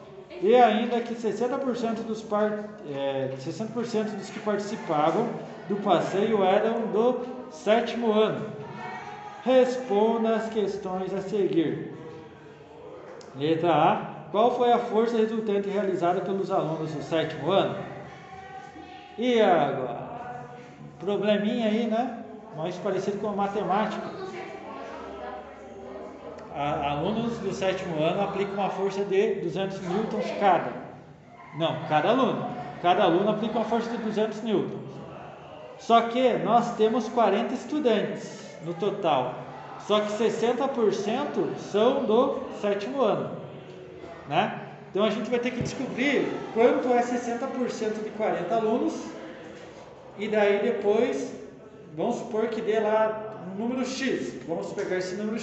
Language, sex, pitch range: Portuguese, male, 195-230 Hz